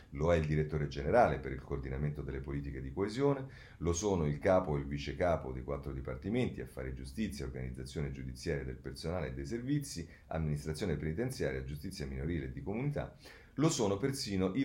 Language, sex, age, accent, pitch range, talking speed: Italian, male, 40-59, native, 70-95 Hz, 175 wpm